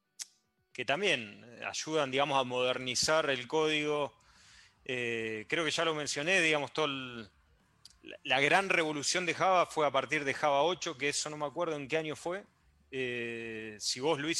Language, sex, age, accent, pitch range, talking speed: English, male, 30-49, Argentinian, 115-155 Hz, 170 wpm